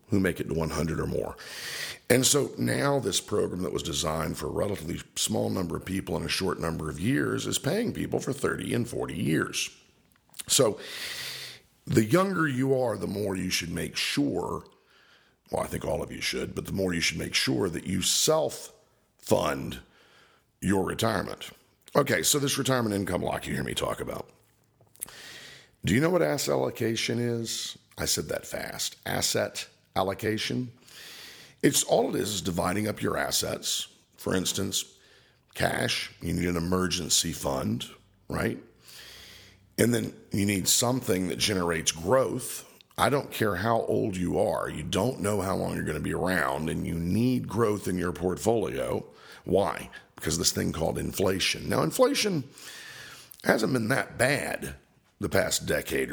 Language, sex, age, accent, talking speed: English, male, 50-69, American, 165 wpm